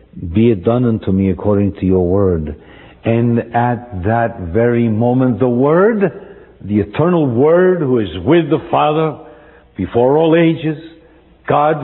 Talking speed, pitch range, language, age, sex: 140 wpm, 95-125 Hz, English, 60-79, male